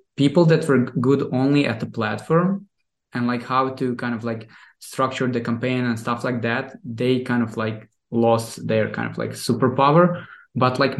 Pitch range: 120-145 Hz